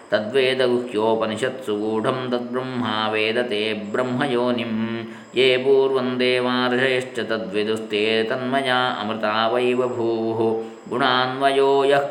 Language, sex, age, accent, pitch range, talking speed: Kannada, male, 20-39, native, 110-125 Hz, 55 wpm